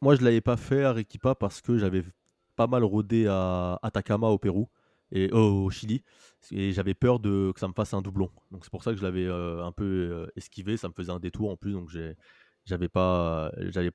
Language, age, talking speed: French, 20-39, 230 wpm